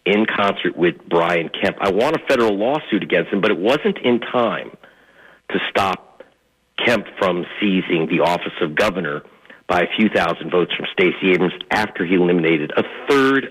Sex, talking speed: male, 175 wpm